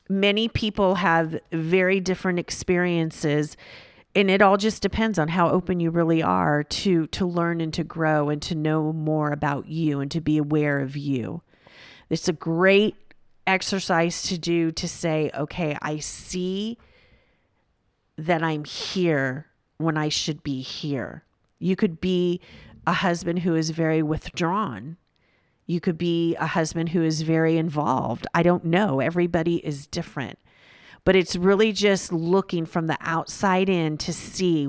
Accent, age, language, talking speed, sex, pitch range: American, 40-59, English, 155 wpm, female, 150-180 Hz